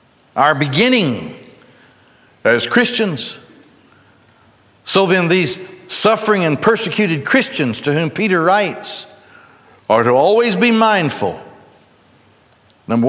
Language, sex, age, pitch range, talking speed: English, male, 60-79, 125-185 Hz, 95 wpm